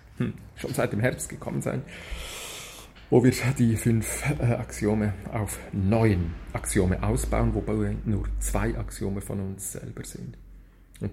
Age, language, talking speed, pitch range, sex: 40-59, German, 140 wpm, 100-155 Hz, male